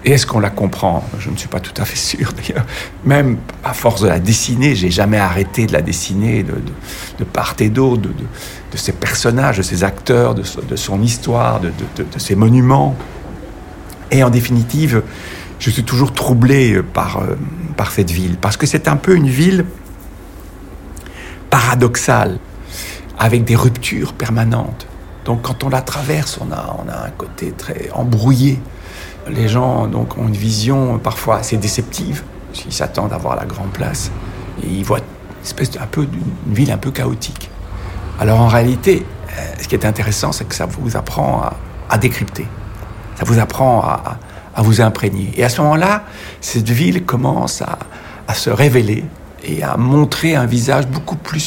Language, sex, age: French, male, 60-79